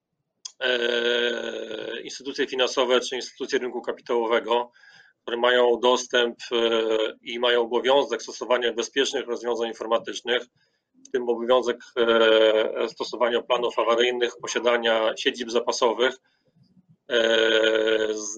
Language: Polish